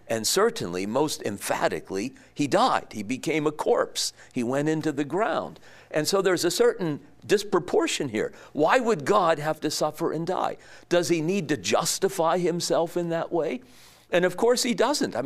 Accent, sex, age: American, male, 50-69